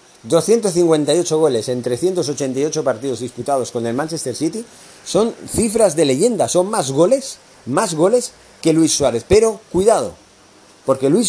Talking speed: 140 wpm